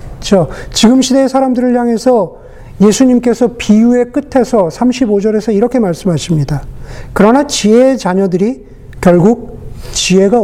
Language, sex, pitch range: Korean, male, 160-235 Hz